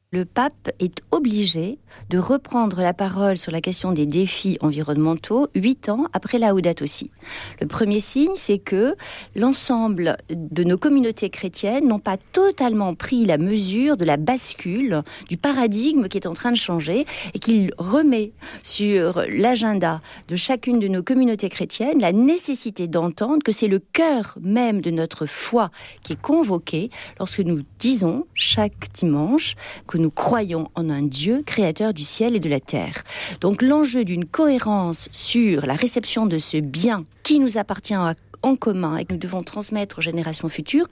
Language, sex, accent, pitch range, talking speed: French, female, French, 175-250 Hz, 165 wpm